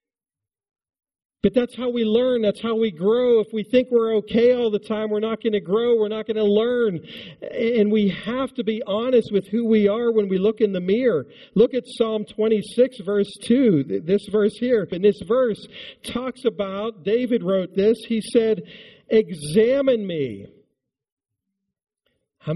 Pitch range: 190-245 Hz